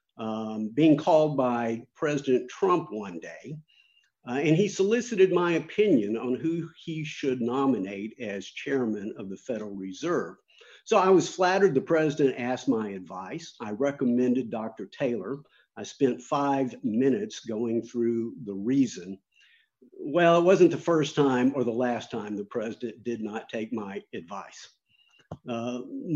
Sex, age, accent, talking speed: male, 50-69, American, 145 wpm